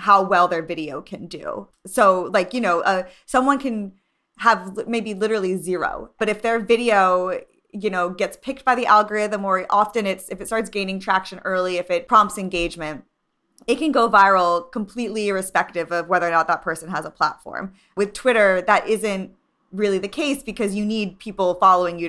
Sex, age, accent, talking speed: female, 20-39, American, 185 wpm